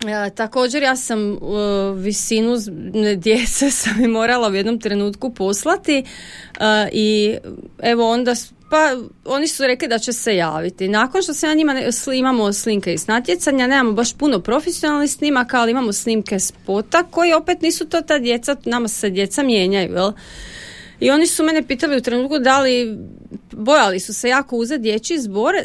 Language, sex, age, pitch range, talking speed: Croatian, female, 30-49, 200-265 Hz, 175 wpm